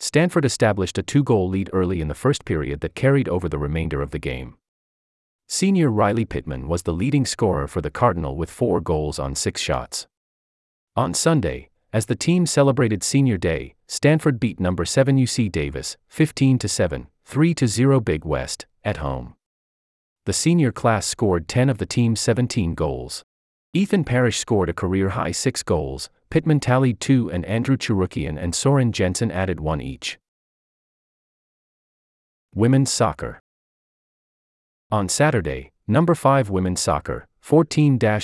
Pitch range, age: 80-130 Hz, 30-49